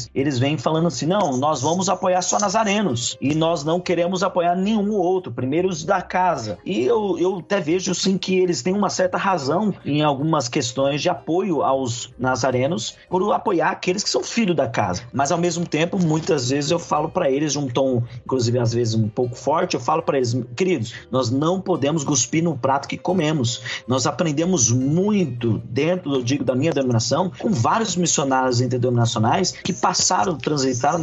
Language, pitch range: Portuguese, 130-175 Hz